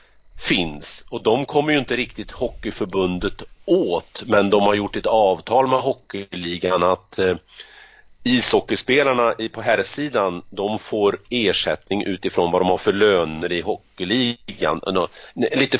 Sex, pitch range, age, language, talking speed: male, 90-120 Hz, 40-59, Swedish, 125 wpm